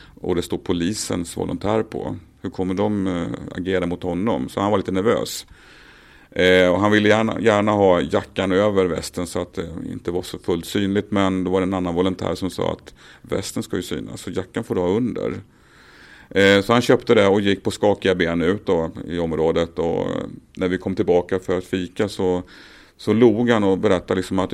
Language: Swedish